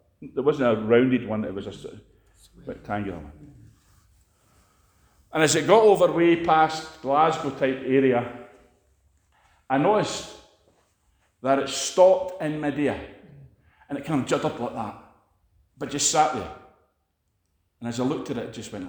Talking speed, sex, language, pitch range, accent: 160 wpm, male, English, 95-135 Hz, British